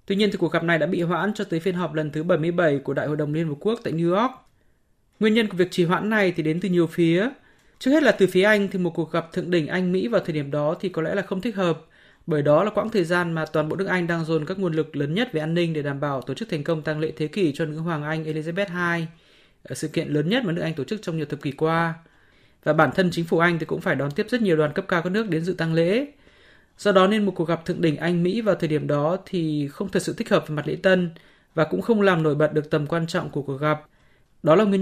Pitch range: 160-195 Hz